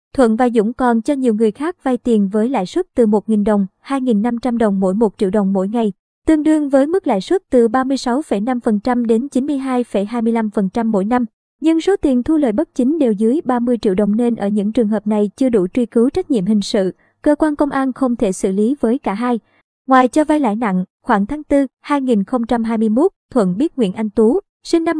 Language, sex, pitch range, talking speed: Vietnamese, male, 220-270 Hz, 215 wpm